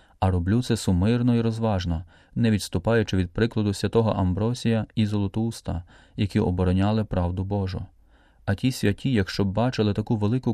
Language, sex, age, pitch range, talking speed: Ukrainian, male, 30-49, 95-115 Hz, 150 wpm